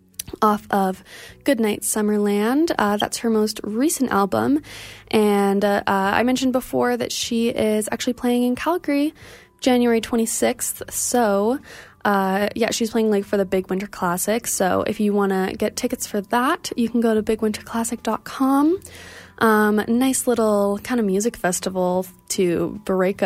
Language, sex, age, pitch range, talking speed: English, female, 20-39, 195-245 Hz, 150 wpm